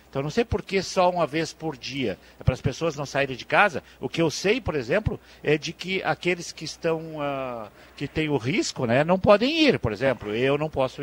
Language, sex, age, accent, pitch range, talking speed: Portuguese, male, 50-69, Brazilian, 115-160 Hz, 235 wpm